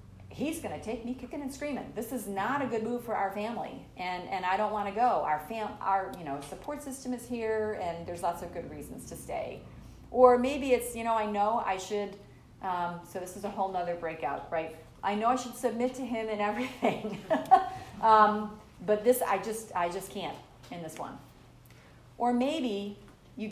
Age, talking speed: 40-59, 210 wpm